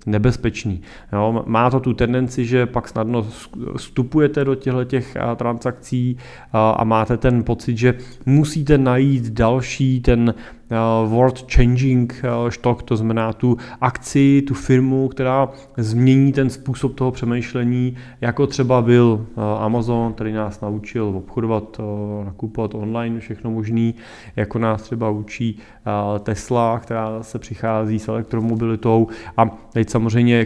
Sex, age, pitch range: male, 30-49, 110-125 Hz